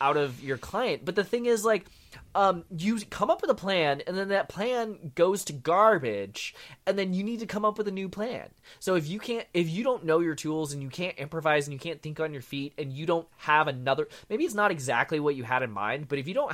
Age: 20-39